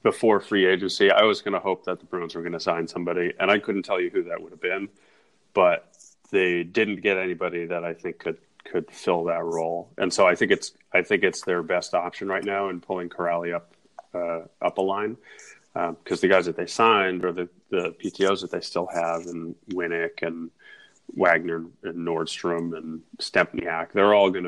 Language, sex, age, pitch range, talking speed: English, male, 30-49, 85-95 Hz, 210 wpm